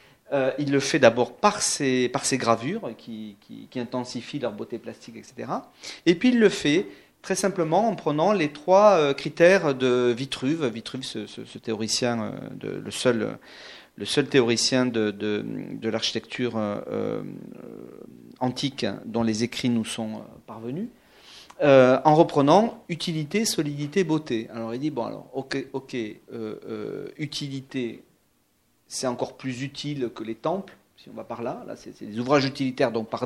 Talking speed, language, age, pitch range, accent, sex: 145 wpm, French, 40-59, 120-160 Hz, French, male